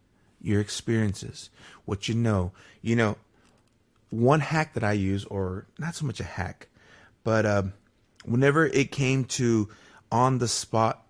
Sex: male